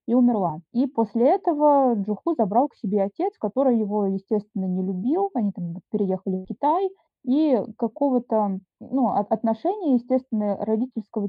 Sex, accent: female, native